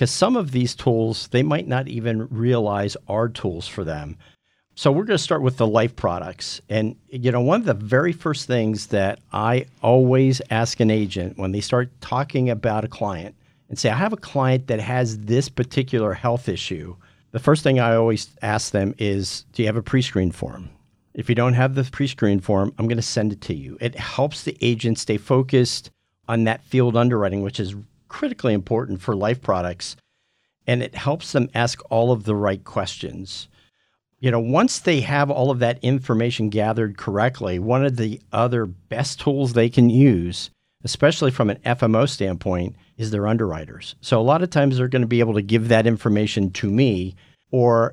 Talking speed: 200 wpm